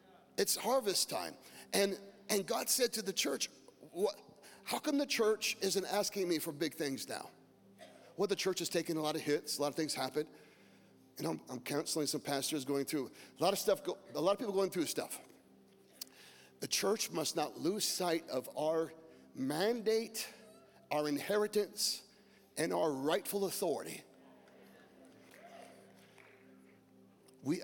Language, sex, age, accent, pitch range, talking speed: English, male, 40-59, American, 130-195 Hz, 155 wpm